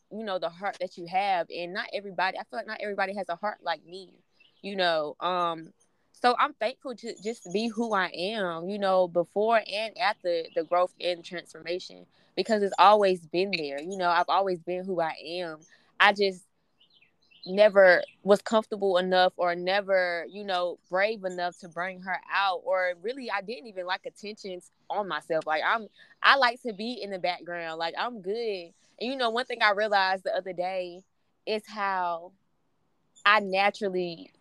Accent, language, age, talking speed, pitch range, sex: American, English, 20-39, 185 wpm, 175-215 Hz, female